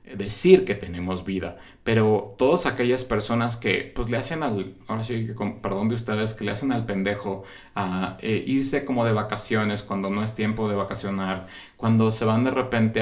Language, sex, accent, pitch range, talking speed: Spanish, male, Mexican, 105-125 Hz, 180 wpm